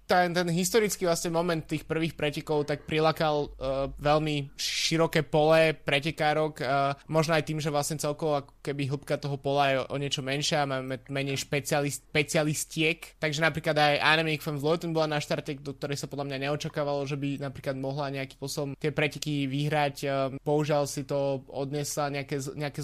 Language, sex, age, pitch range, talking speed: Slovak, male, 20-39, 140-155 Hz, 170 wpm